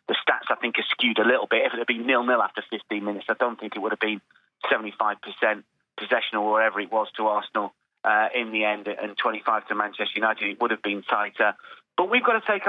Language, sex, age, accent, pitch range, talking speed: English, male, 30-49, British, 110-130 Hz, 240 wpm